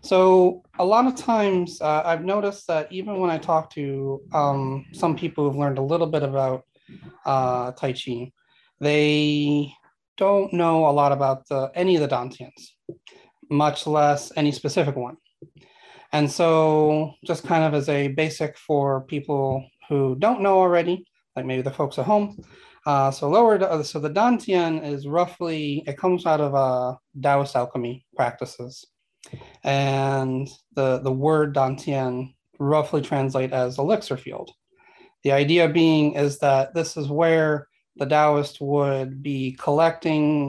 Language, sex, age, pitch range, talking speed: English, male, 30-49, 135-165 Hz, 145 wpm